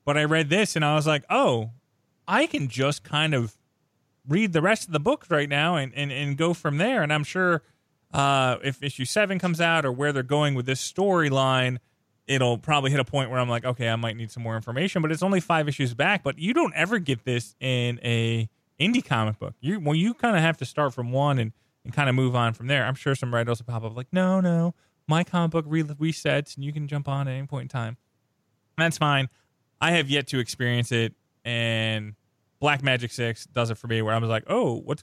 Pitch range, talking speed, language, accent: 115-165 Hz, 240 wpm, English, American